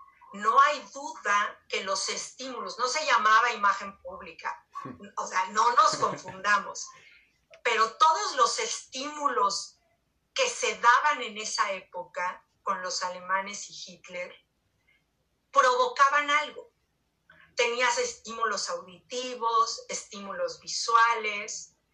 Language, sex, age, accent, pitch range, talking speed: Spanish, female, 40-59, Mexican, 220-320 Hz, 105 wpm